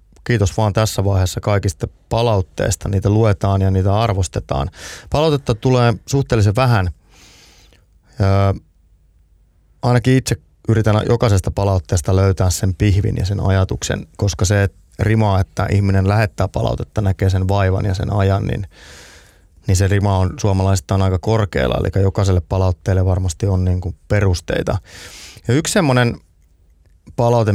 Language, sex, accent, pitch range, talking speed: Finnish, male, native, 90-110 Hz, 130 wpm